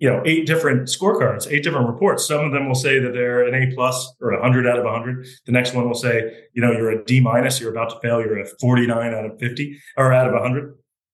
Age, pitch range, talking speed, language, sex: 40-59, 115-135 Hz, 270 wpm, English, male